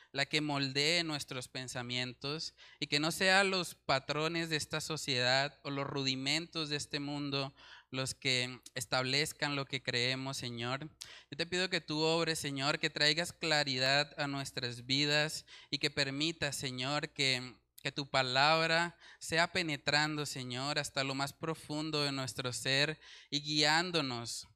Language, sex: Spanish, male